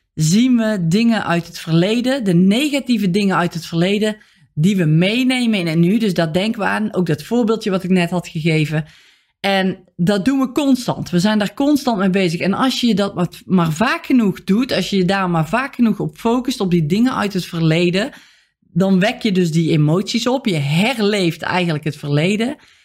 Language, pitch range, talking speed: Dutch, 175-225 Hz, 200 wpm